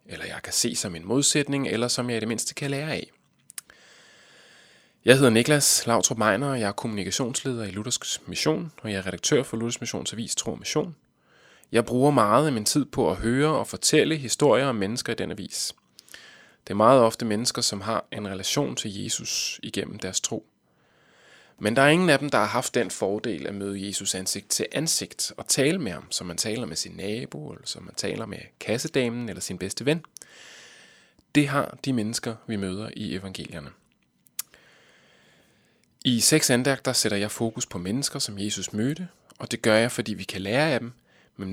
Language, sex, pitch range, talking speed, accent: Danish, male, 105-135 Hz, 195 wpm, native